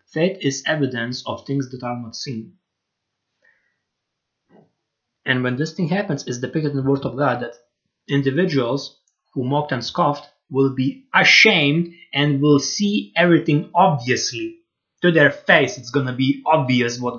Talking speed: 155 wpm